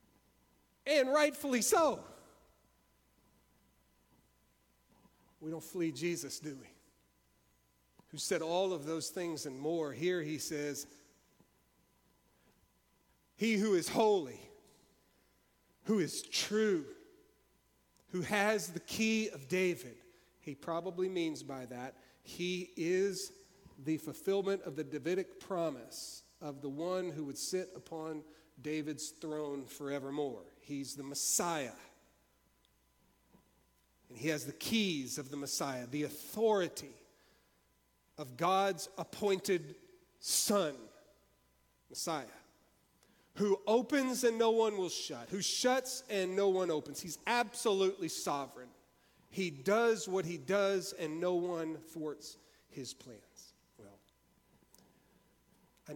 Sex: male